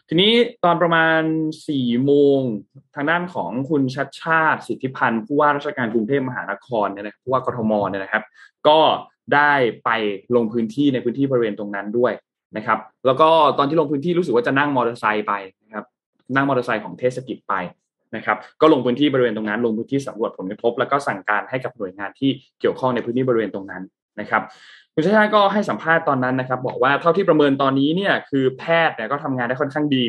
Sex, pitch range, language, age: male, 110-145 Hz, Thai, 20-39